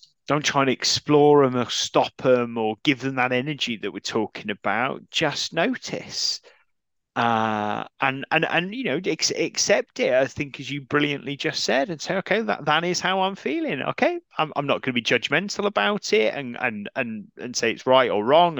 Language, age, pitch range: English, 30-49, 130-170 Hz